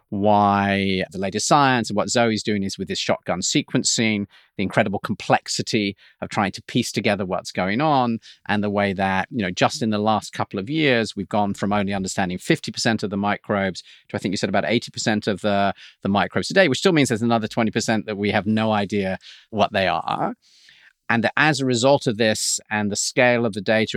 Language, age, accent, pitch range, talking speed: English, 40-59, British, 100-115 Hz, 210 wpm